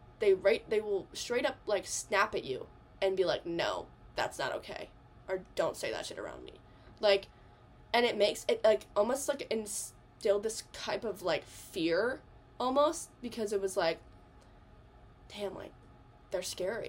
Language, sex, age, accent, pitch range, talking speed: English, female, 10-29, American, 170-275 Hz, 165 wpm